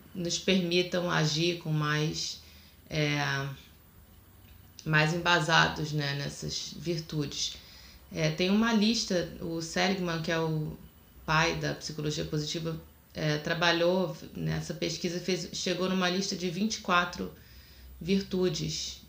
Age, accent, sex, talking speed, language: 20-39, Brazilian, female, 110 wpm, Portuguese